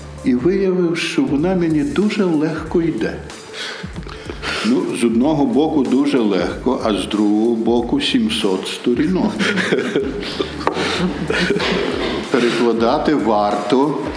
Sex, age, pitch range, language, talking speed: male, 60-79, 110-145 Hz, Ukrainian, 95 wpm